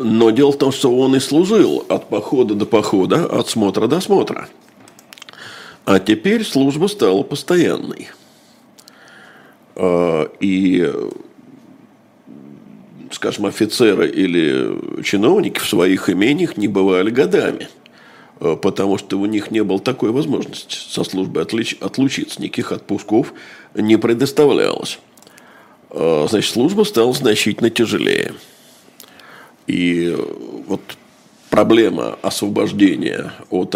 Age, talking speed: 50-69, 100 wpm